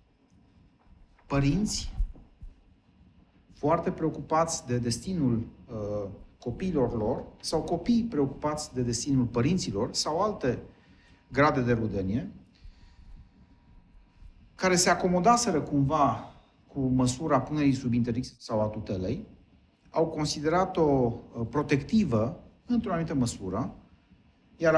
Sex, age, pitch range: male, 40-59, 105-150 Hz